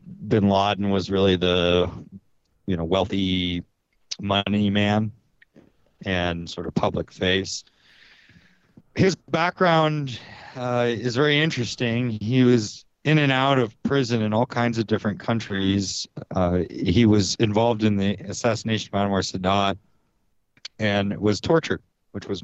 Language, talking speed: English, 130 wpm